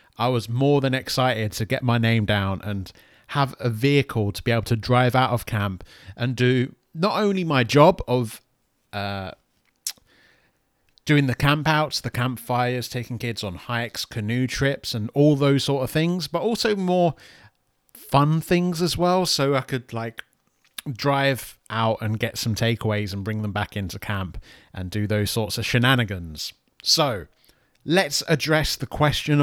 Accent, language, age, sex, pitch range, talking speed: British, English, 30-49, male, 115-145 Hz, 165 wpm